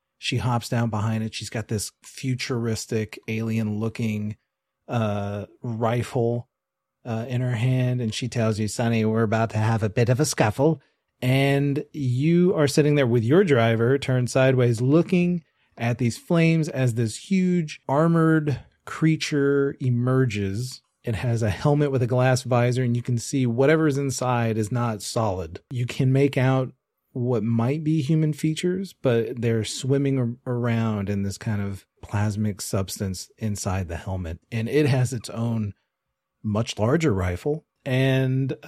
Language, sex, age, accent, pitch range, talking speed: English, male, 30-49, American, 115-145 Hz, 155 wpm